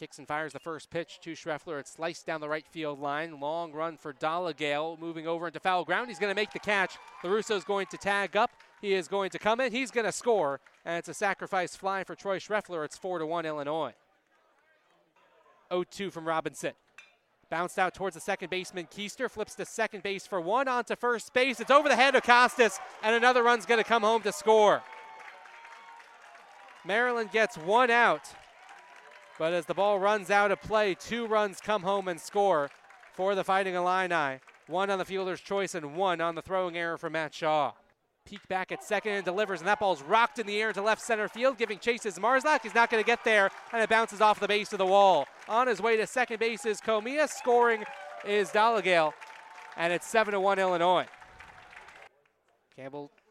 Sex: male